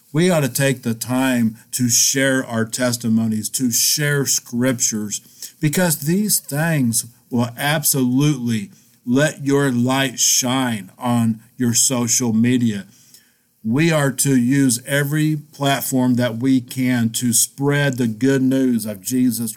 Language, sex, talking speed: English, male, 130 wpm